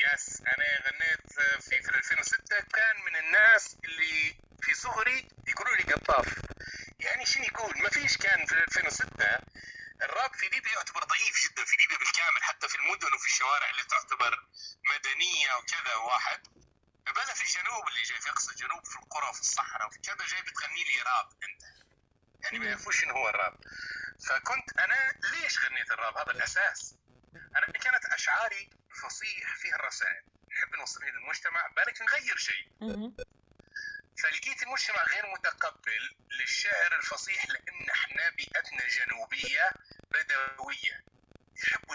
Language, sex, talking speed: Arabic, male, 135 wpm